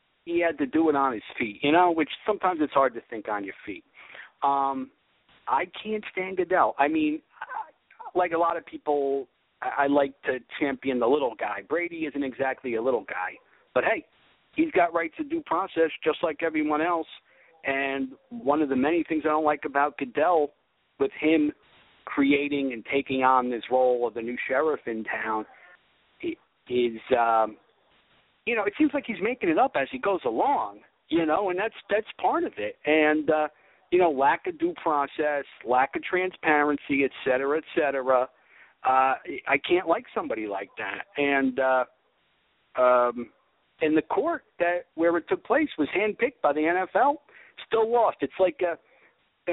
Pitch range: 130-180 Hz